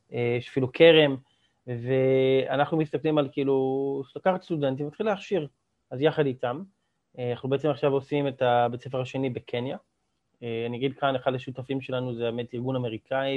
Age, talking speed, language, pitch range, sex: 30-49, 150 wpm, Hebrew, 130-155 Hz, male